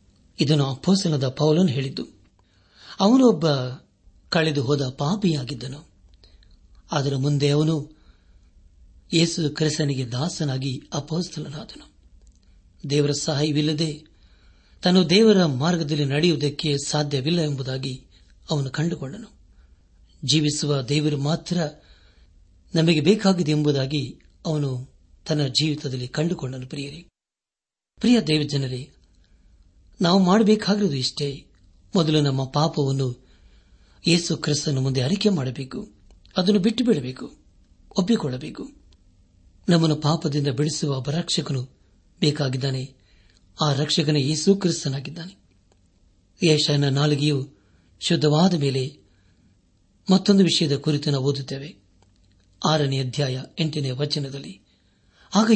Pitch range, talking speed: 100-160 Hz, 85 wpm